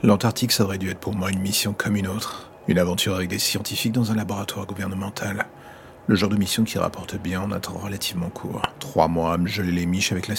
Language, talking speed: French, 245 wpm